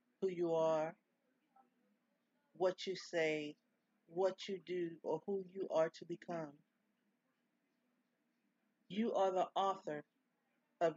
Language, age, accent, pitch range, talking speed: English, 50-69, American, 185-250 Hz, 110 wpm